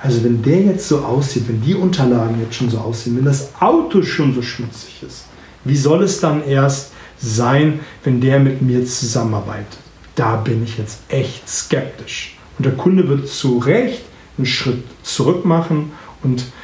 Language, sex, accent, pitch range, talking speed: German, male, German, 125-160 Hz, 175 wpm